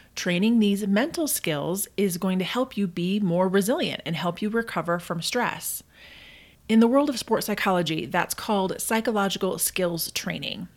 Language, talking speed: English, 160 wpm